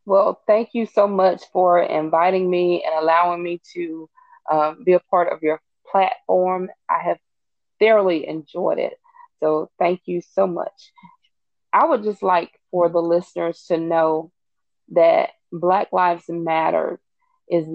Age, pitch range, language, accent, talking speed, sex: 20-39, 170-205 Hz, English, American, 145 wpm, female